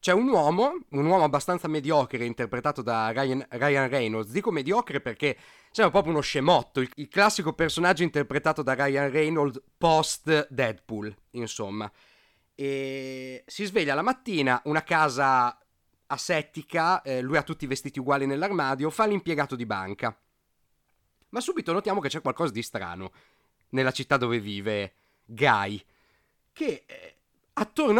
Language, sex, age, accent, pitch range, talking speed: Italian, male, 30-49, native, 130-195 Hz, 135 wpm